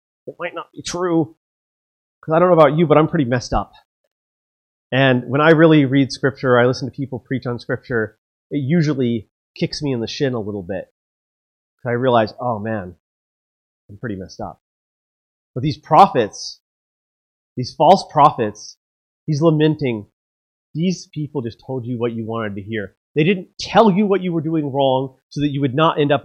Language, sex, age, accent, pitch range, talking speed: English, male, 30-49, American, 110-150 Hz, 185 wpm